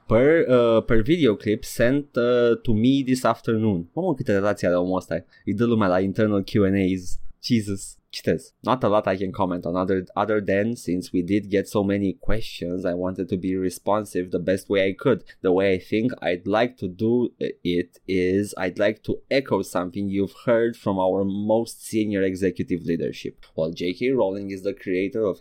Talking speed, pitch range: 195 wpm, 90-110 Hz